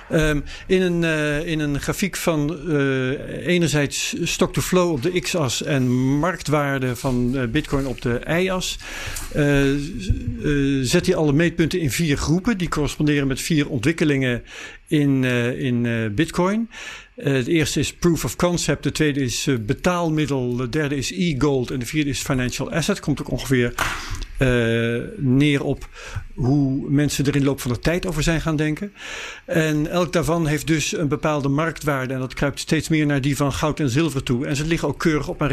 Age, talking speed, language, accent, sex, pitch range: 60-79, 180 wpm, Dutch, Dutch, male, 135-165 Hz